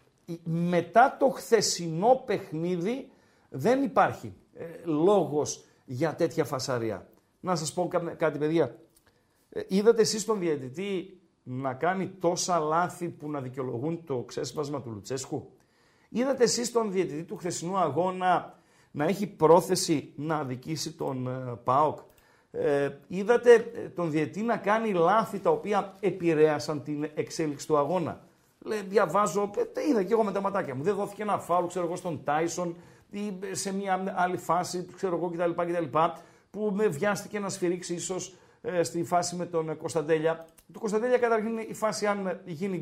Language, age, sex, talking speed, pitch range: Greek, 50-69, male, 135 wpm, 160-205 Hz